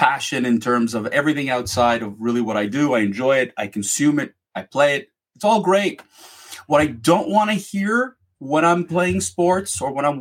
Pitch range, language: 130-180 Hz, English